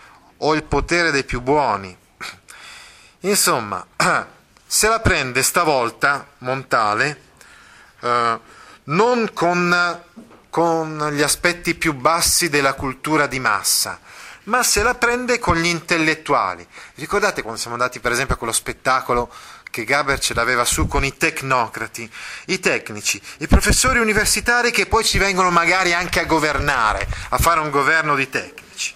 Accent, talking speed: native, 140 wpm